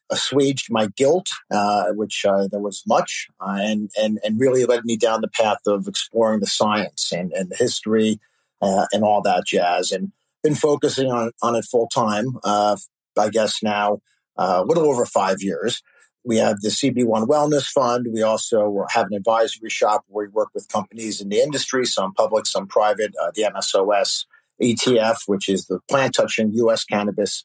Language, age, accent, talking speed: English, 50-69, American, 185 wpm